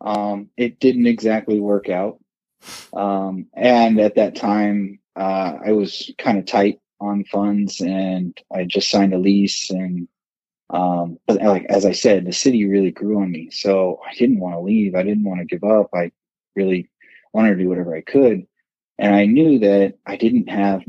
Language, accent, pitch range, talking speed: English, American, 90-105 Hz, 185 wpm